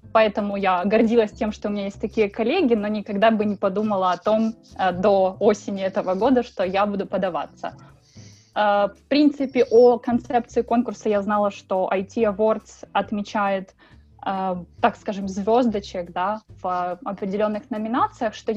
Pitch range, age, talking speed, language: 200-235 Hz, 20-39, 140 wpm, Russian